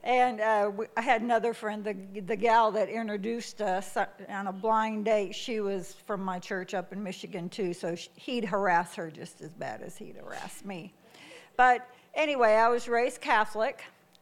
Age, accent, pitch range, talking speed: 60-79, American, 190-230 Hz, 175 wpm